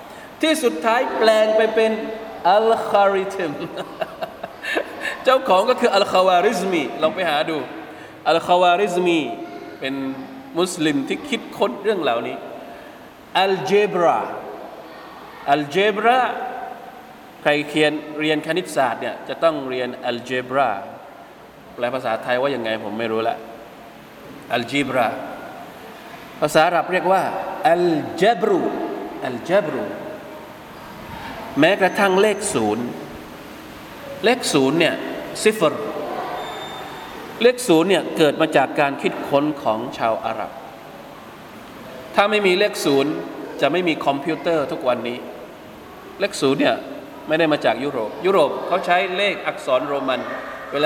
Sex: male